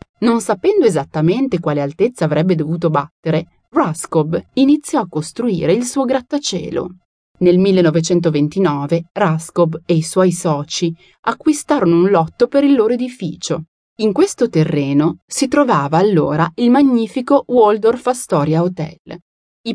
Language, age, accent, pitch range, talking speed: Italian, 30-49, native, 160-255 Hz, 125 wpm